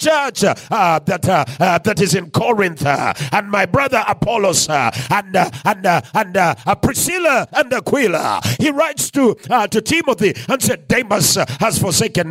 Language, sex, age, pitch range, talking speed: English, male, 50-69, 180-260 Hz, 180 wpm